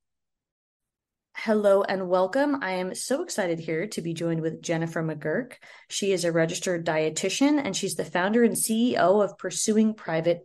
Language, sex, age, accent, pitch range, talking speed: English, female, 30-49, American, 170-230 Hz, 160 wpm